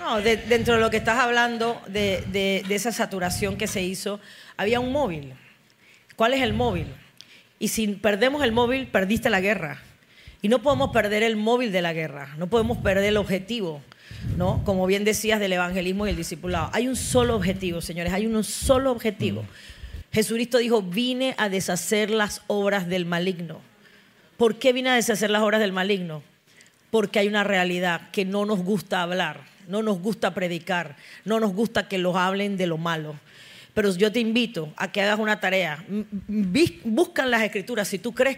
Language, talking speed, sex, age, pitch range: Spanish, 185 wpm, female, 40-59, 185-235 Hz